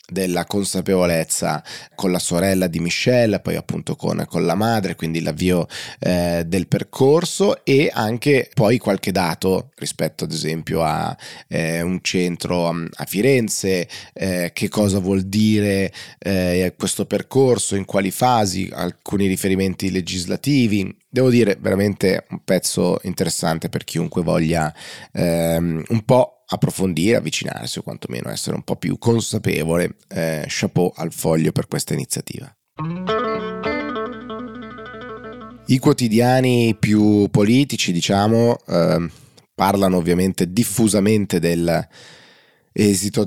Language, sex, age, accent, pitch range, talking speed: Italian, male, 30-49, native, 90-115 Hz, 115 wpm